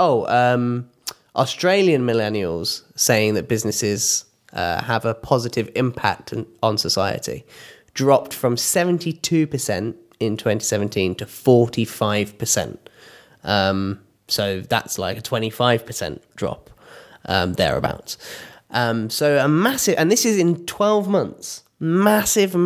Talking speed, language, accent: 105 wpm, English, British